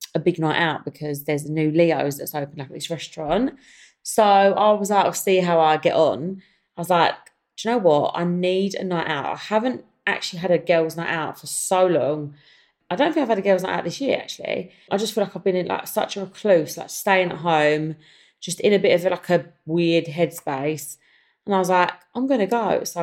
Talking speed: 245 wpm